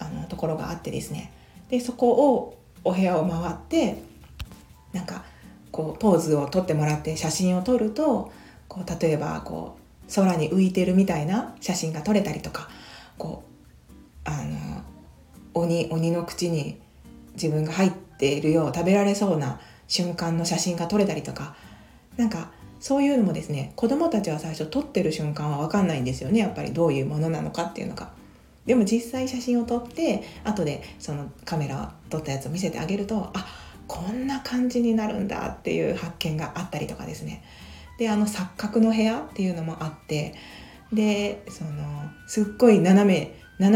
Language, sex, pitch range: Japanese, female, 155-210 Hz